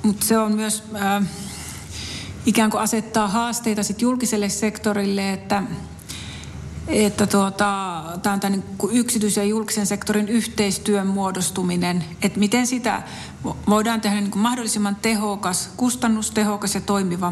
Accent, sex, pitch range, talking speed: native, female, 185-215 Hz, 125 wpm